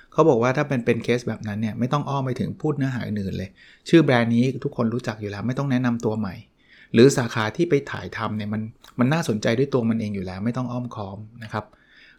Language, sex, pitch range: Thai, male, 115-140 Hz